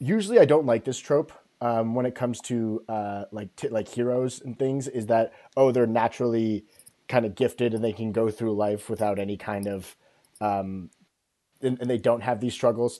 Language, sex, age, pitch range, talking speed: English, male, 30-49, 105-120 Hz, 205 wpm